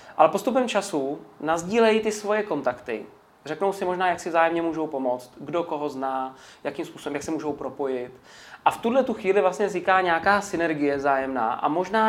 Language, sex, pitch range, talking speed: Czech, male, 145-185 Hz, 180 wpm